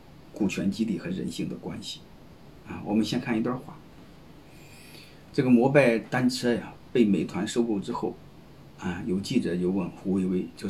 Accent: native